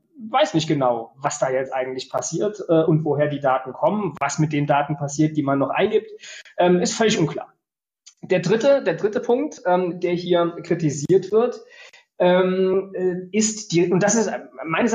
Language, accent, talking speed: German, German, 175 wpm